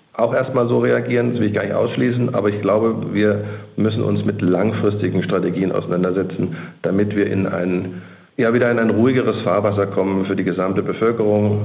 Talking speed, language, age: 180 wpm, German, 50-69